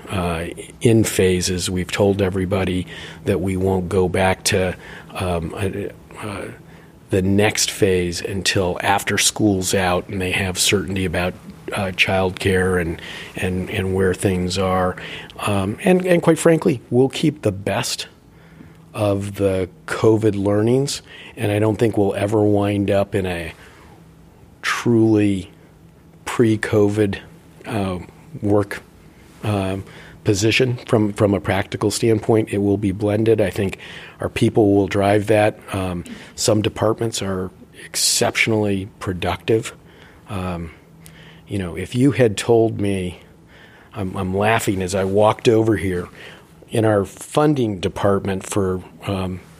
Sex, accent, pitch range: male, American, 95-110 Hz